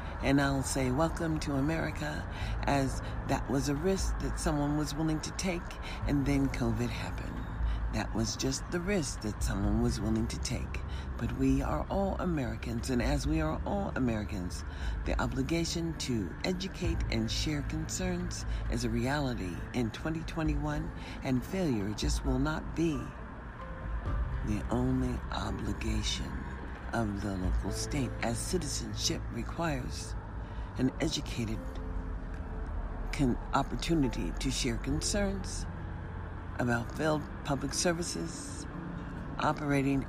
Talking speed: 125 wpm